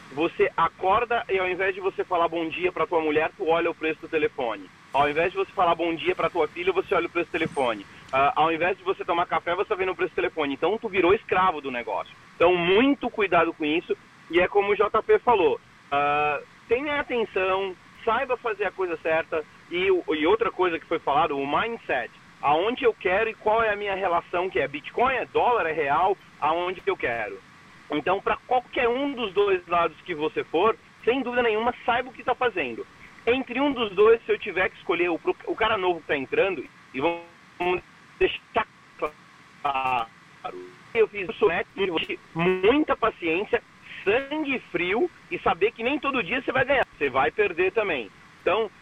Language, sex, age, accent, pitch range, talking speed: Portuguese, male, 30-49, Brazilian, 170-275 Hz, 195 wpm